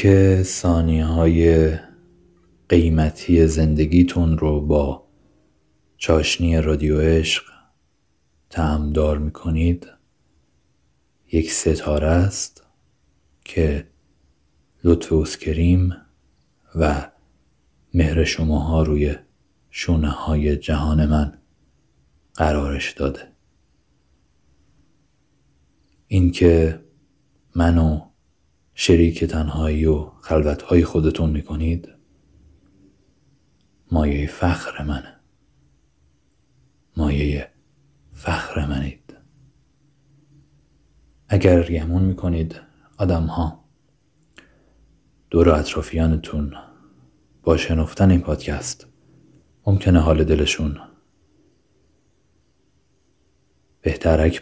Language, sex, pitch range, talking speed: Persian, male, 75-85 Hz, 65 wpm